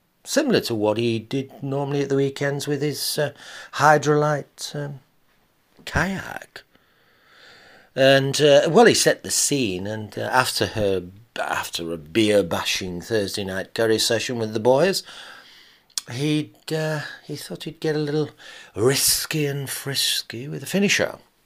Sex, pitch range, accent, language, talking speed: male, 100-135 Hz, British, English, 145 wpm